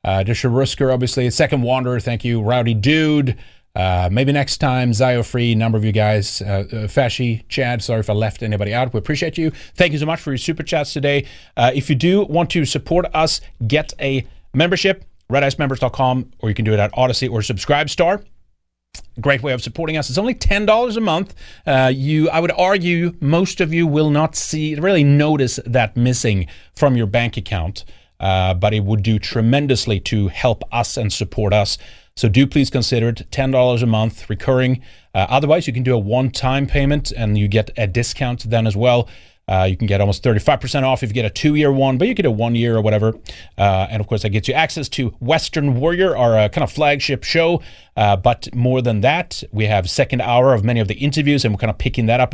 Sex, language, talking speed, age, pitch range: male, English, 215 wpm, 30-49, 110-140 Hz